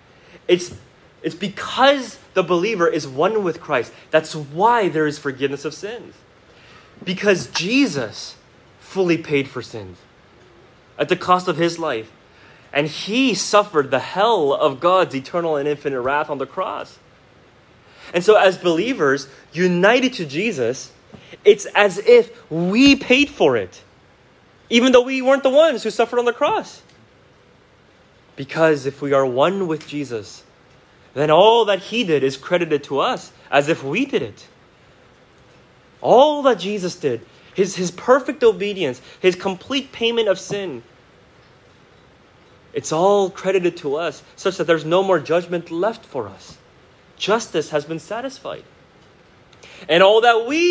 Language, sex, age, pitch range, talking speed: English, male, 30-49, 145-215 Hz, 145 wpm